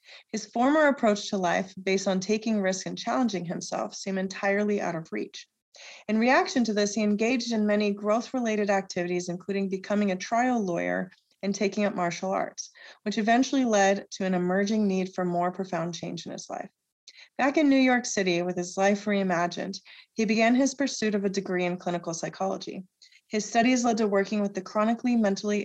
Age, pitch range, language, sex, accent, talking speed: 30-49, 180-220 Hz, English, female, American, 185 wpm